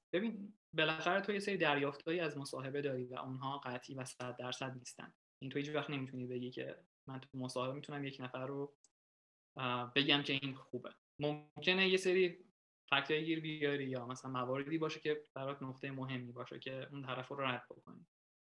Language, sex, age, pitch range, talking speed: Persian, male, 20-39, 130-155 Hz, 175 wpm